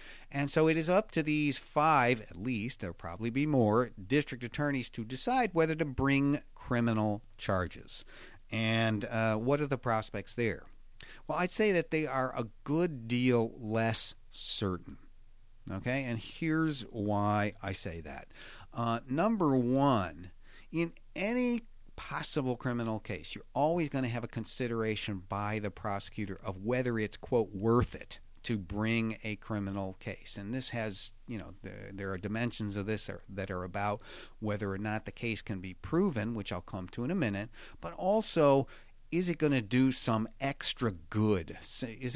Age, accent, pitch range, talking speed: 50-69, American, 105-135 Hz, 165 wpm